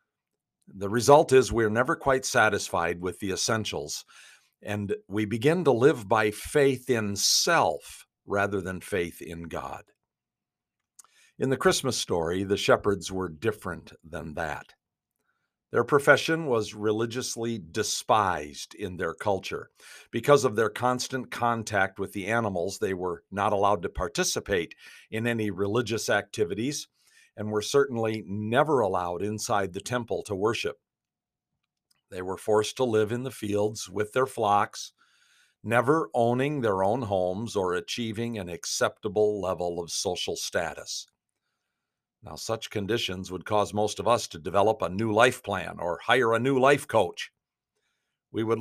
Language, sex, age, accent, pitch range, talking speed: English, male, 50-69, American, 100-125 Hz, 145 wpm